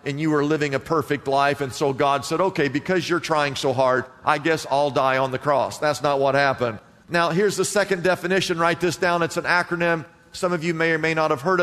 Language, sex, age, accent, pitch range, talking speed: English, male, 50-69, American, 140-190 Hz, 250 wpm